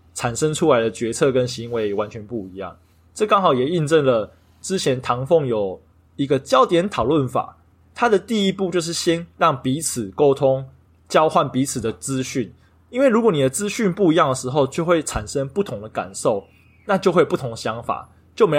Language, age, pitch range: Chinese, 20-39, 110-165 Hz